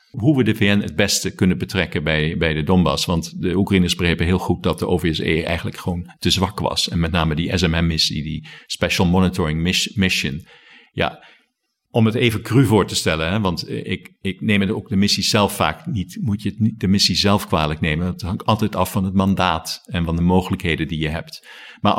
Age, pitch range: 50-69, 90-110 Hz